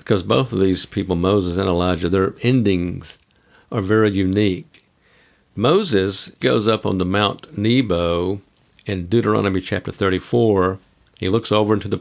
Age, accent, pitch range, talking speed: 50-69, American, 95-115 Hz, 145 wpm